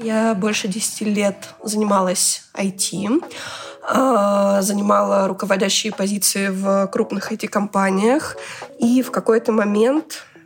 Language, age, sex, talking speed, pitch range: Russian, 20-39, female, 90 wpm, 200-235 Hz